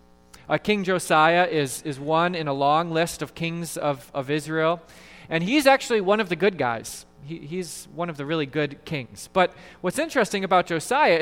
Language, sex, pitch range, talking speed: English, male, 150-195 Hz, 195 wpm